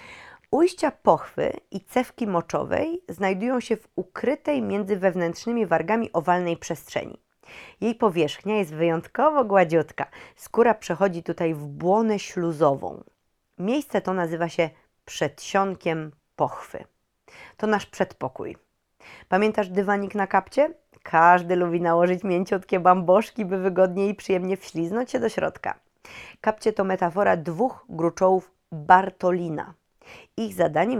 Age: 30-49